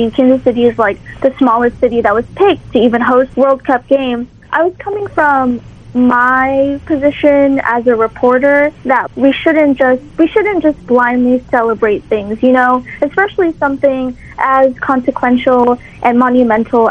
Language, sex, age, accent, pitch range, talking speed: English, female, 20-39, American, 245-295 Hz, 155 wpm